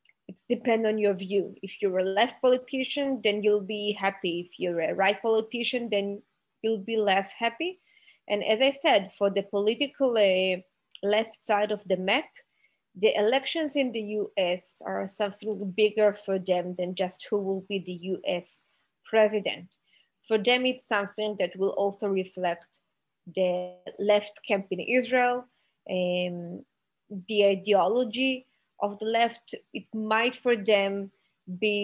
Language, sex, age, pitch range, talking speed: English, female, 20-39, 195-230 Hz, 150 wpm